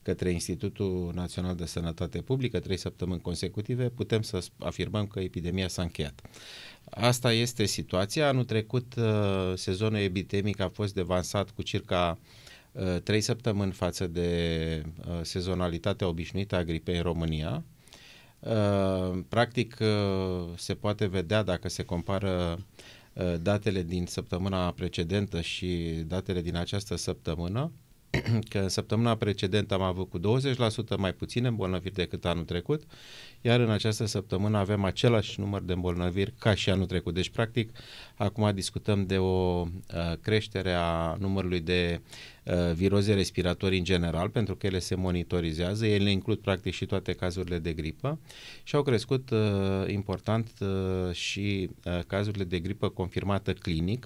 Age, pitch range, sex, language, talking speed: 30-49, 90-105 Hz, male, Romanian, 130 wpm